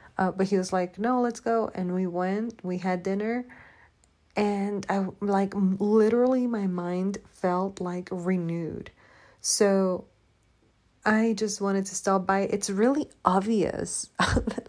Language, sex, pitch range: Spanish, female, 175-220 Hz